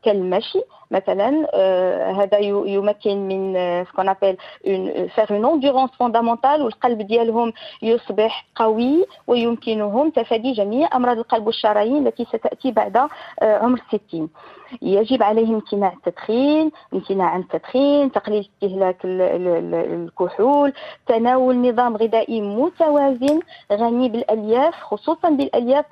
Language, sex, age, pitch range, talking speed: Arabic, female, 40-59, 205-260 Hz, 90 wpm